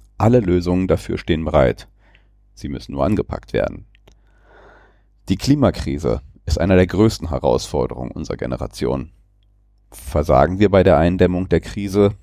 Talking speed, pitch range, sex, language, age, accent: 130 wpm, 85-105 Hz, male, German, 40-59, German